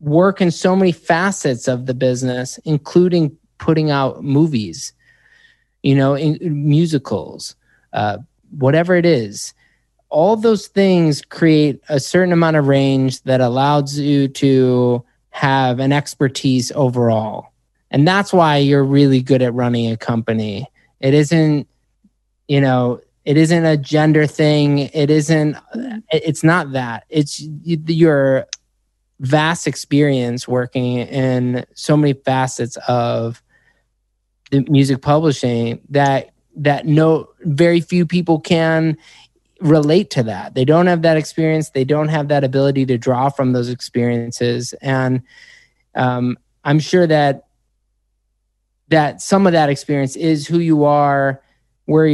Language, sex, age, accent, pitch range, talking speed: English, male, 20-39, American, 130-155 Hz, 130 wpm